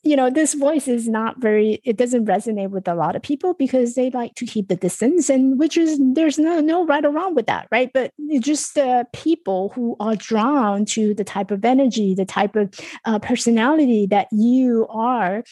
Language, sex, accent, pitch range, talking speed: English, female, American, 205-260 Hz, 215 wpm